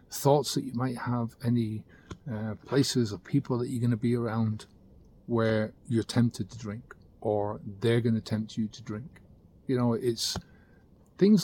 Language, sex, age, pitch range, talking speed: English, male, 40-59, 105-120 Hz, 175 wpm